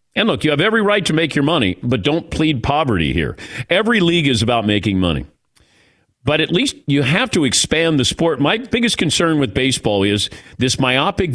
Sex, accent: male, American